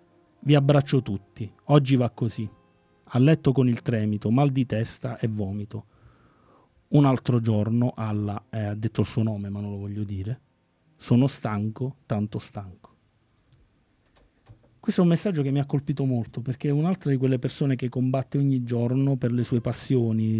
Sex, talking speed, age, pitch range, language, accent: male, 170 wpm, 30-49, 115-145 Hz, Italian, native